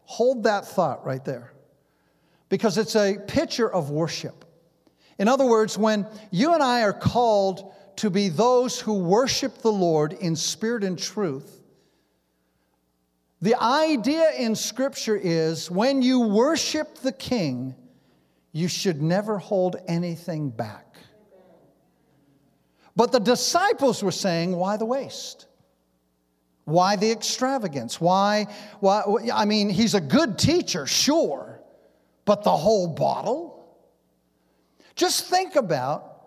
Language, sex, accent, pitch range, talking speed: English, male, American, 165-230 Hz, 120 wpm